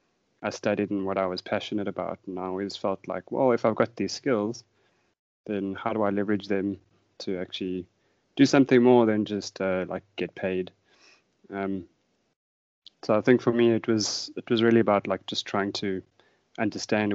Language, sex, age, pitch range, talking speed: English, male, 20-39, 95-115 Hz, 185 wpm